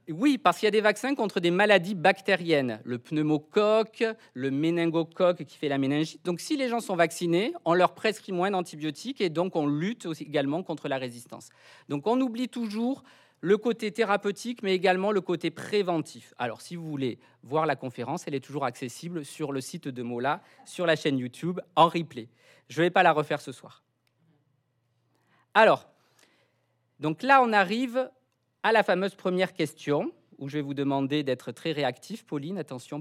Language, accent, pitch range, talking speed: French, French, 140-195 Hz, 180 wpm